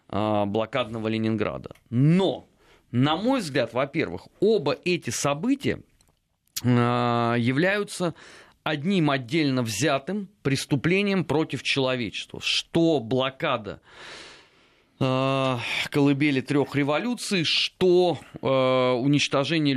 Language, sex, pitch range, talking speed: Russian, male, 120-160 Hz, 75 wpm